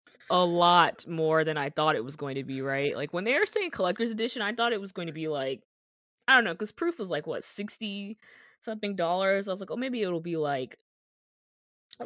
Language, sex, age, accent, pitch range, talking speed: English, female, 20-39, American, 155-205 Hz, 230 wpm